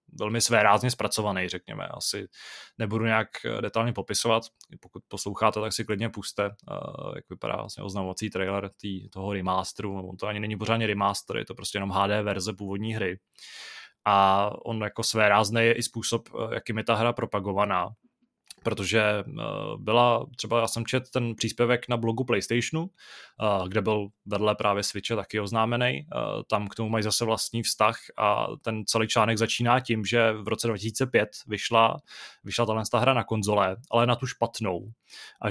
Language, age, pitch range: Czech, 20-39, 100-115 Hz